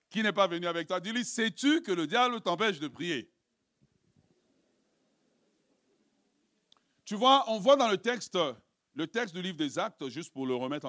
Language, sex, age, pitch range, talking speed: French, male, 50-69, 175-265 Hz, 170 wpm